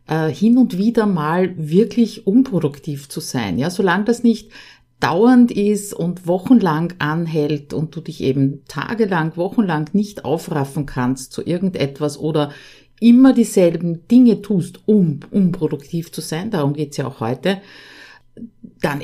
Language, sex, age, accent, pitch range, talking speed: German, female, 50-69, Austrian, 145-195 Hz, 135 wpm